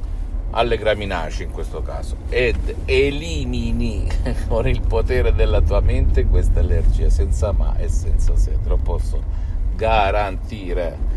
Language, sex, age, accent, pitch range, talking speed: Italian, male, 50-69, native, 75-100 Hz, 125 wpm